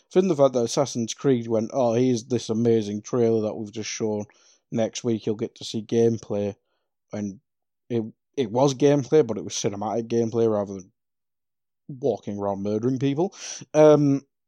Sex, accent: male, British